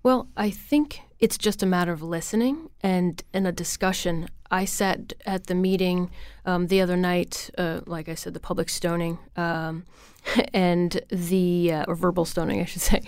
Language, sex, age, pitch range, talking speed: English, female, 30-49, 170-190 Hz, 175 wpm